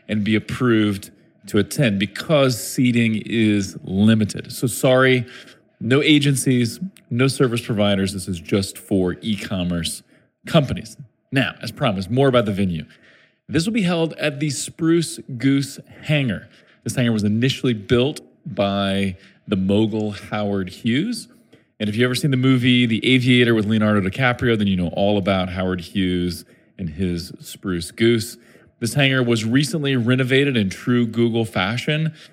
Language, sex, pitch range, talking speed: English, male, 100-135 Hz, 150 wpm